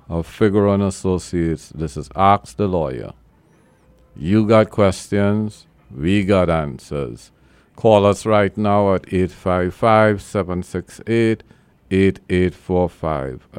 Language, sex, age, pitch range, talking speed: English, male, 50-69, 85-105 Hz, 90 wpm